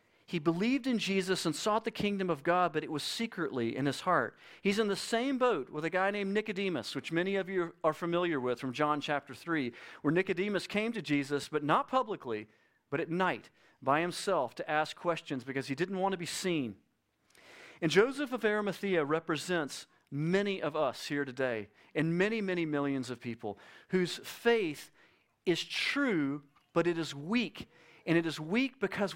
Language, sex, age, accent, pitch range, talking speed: English, male, 40-59, American, 150-205 Hz, 185 wpm